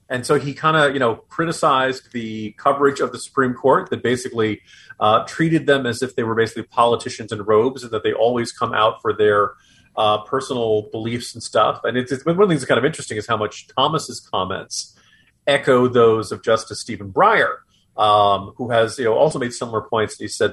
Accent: American